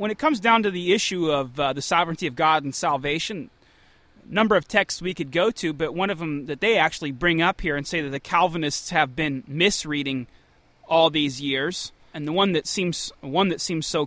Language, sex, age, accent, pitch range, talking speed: English, male, 30-49, American, 155-200 Hz, 225 wpm